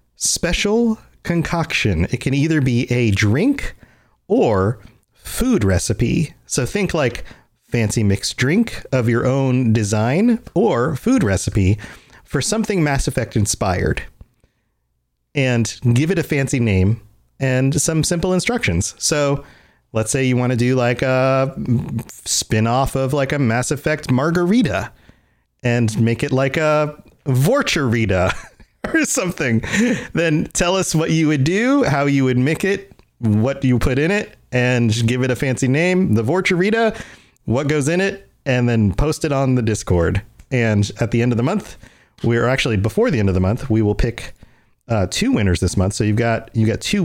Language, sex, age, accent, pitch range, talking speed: English, male, 30-49, American, 115-155 Hz, 165 wpm